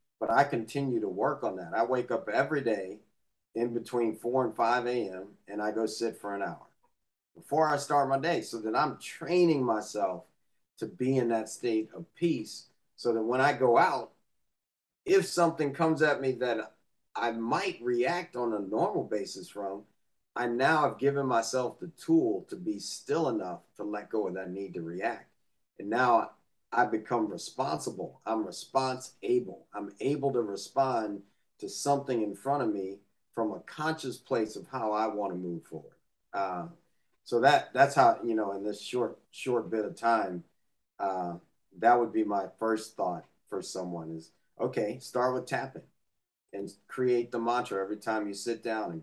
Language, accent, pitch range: English, American, 105-140 Hz